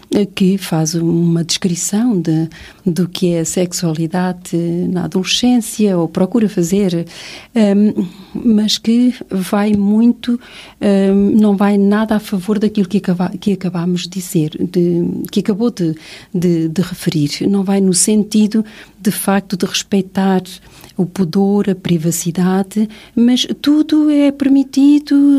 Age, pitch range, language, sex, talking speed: 40-59, 175-215 Hz, Portuguese, female, 120 wpm